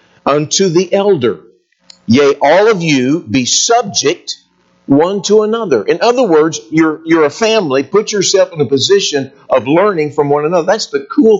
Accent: American